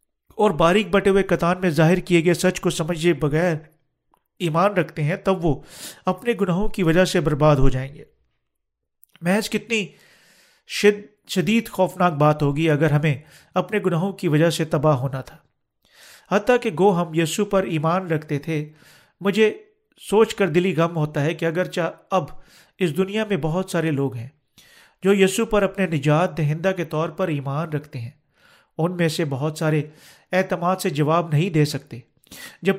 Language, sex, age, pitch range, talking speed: Urdu, male, 40-59, 150-190 Hz, 170 wpm